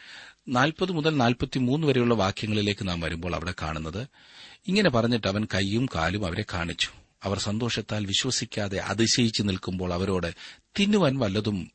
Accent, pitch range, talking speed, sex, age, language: native, 90-115 Hz, 105 wpm, male, 40-59, Malayalam